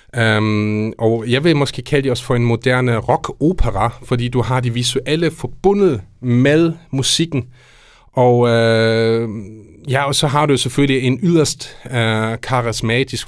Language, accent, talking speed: Danish, native, 140 wpm